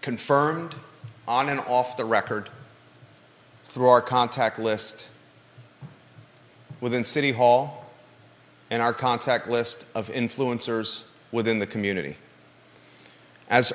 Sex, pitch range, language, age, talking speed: male, 115-135 Hz, English, 30-49, 100 wpm